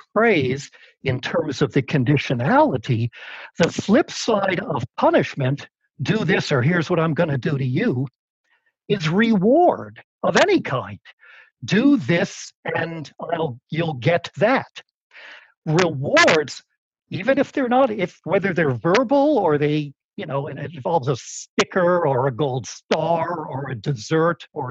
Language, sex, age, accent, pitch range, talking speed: English, male, 60-79, American, 150-235 Hz, 145 wpm